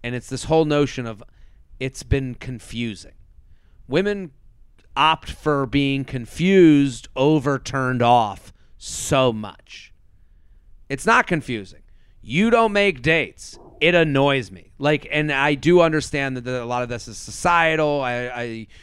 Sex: male